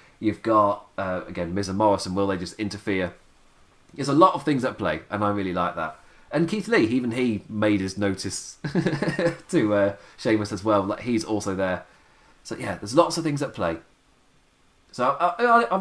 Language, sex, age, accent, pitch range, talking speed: English, male, 30-49, British, 100-150 Hz, 190 wpm